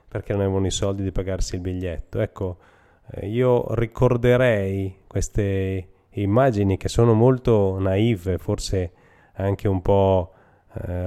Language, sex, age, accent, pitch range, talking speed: Italian, male, 30-49, native, 95-110 Hz, 120 wpm